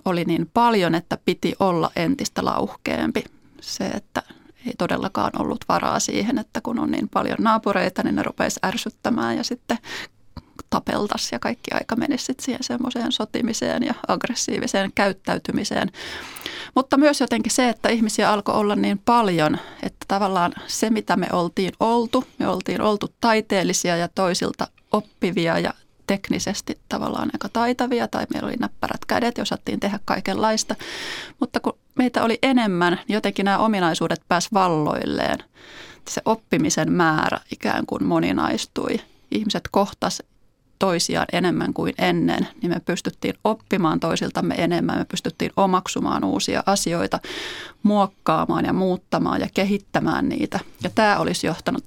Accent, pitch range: native, 185-240 Hz